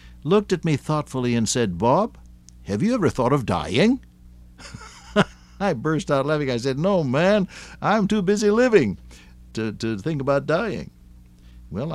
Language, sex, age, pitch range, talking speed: English, male, 60-79, 85-135 Hz, 155 wpm